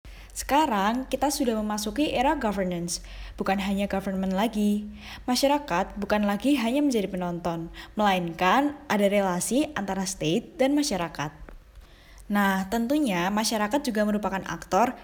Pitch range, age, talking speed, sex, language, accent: 190-245 Hz, 10-29, 115 wpm, female, Indonesian, native